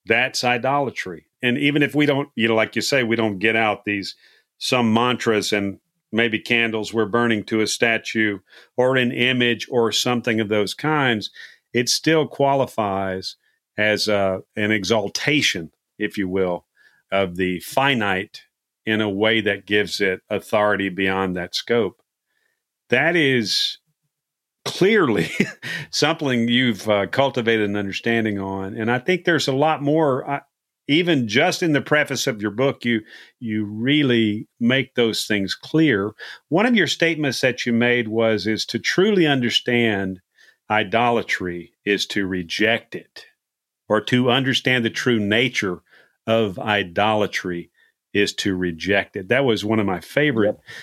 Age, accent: 50-69, American